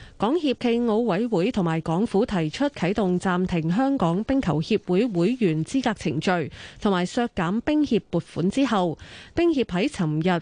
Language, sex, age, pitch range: Chinese, female, 20-39, 170-230 Hz